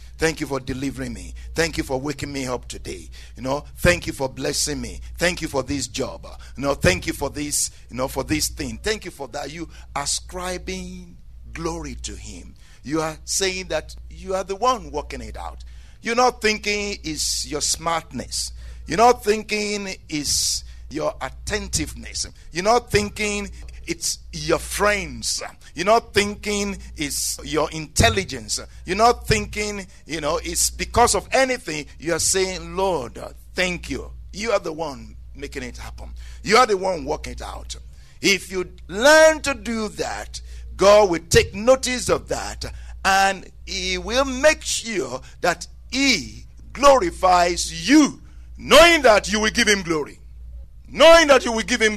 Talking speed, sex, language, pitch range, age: 165 wpm, male, English, 125-210 Hz, 50-69